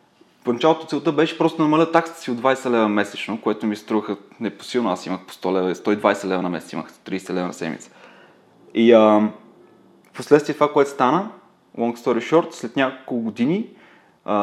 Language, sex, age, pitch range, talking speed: Bulgarian, male, 20-39, 110-140 Hz, 175 wpm